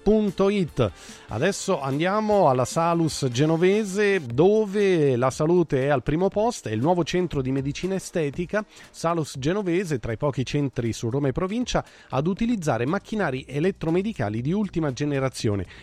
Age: 40-59